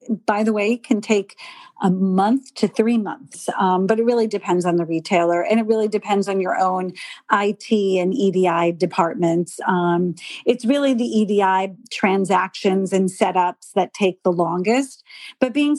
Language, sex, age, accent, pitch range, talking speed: English, female, 40-59, American, 190-235 Hz, 165 wpm